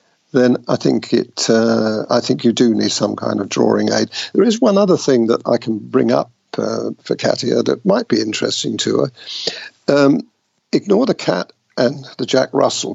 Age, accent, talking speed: 50-69, British, 195 wpm